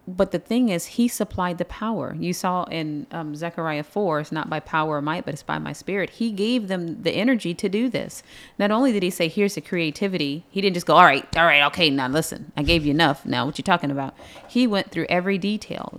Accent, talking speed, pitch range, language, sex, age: American, 250 wpm, 155-195 Hz, English, female, 30-49